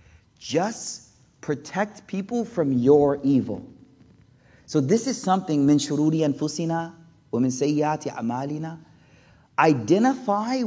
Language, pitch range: English, 130-195 Hz